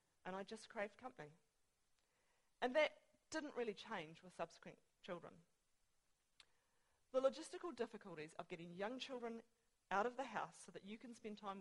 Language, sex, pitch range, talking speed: English, female, 185-255 Hz, 155 wpm